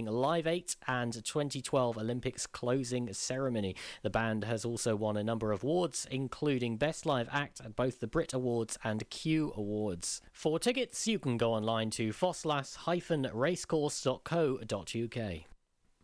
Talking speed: 135 wpm